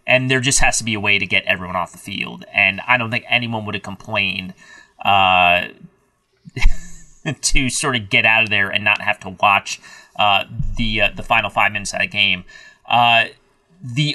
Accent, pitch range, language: American, 105-135 Hz, English